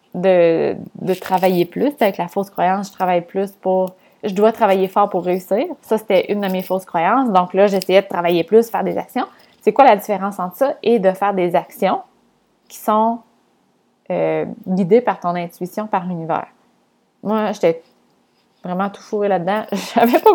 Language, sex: French, female